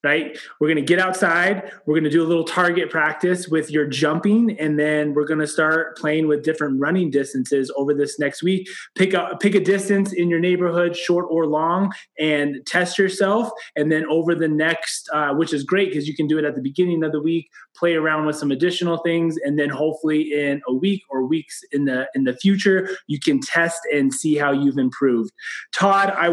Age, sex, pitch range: 20-39, male, 150-180 Hz